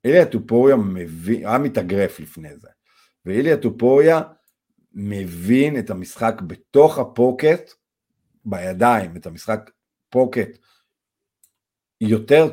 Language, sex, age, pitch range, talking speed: Hebrew, male, 50-69, 100-130 Hz, 90 wpm